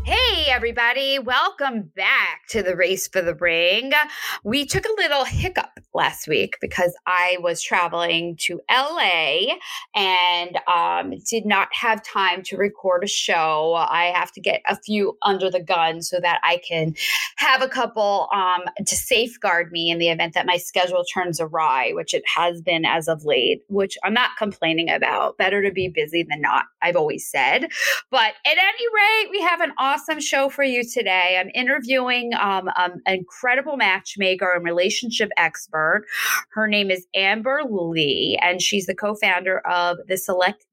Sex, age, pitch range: female, 20-39, 175-240 Hz